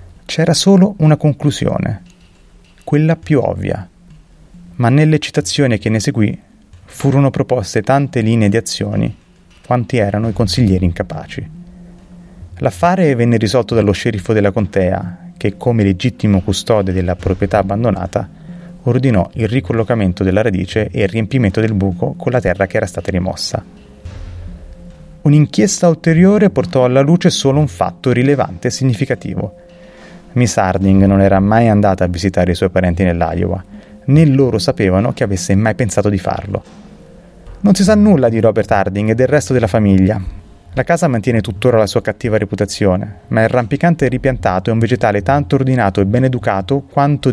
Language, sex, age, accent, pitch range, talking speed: Italian, male, 30-49, native, 100-140 Hz, 150 wpm